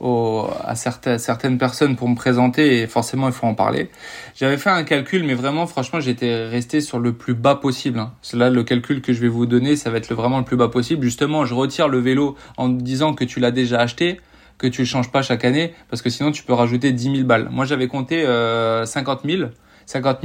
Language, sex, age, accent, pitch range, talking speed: French, male, 20-39, French, 120-135 Hz, 235 wpm